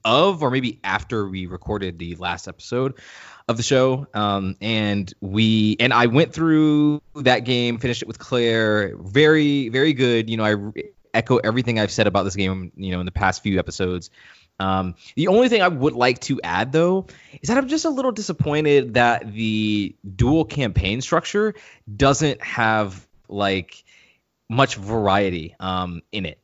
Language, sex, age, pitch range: English, male, 20-39, 100-135 Hz